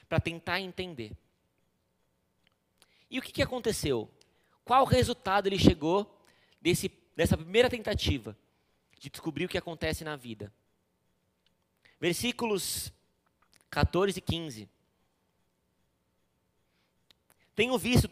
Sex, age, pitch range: male, 20-39, 115-185 Hz